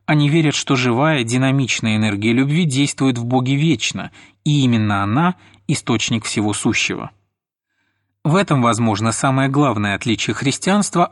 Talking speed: 130 wpm